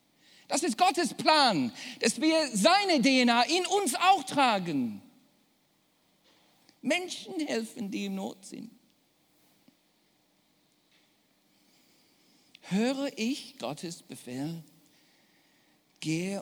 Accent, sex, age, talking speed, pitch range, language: German, male, 50-69, 85 wpm, 215-285 Hz, German